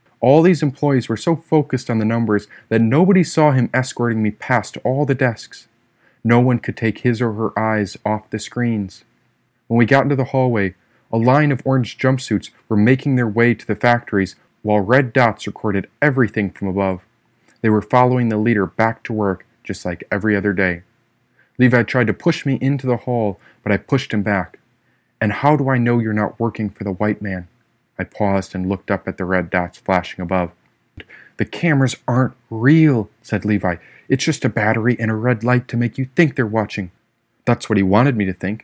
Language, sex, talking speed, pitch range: English, male, 205 wpm, 105-125 Hz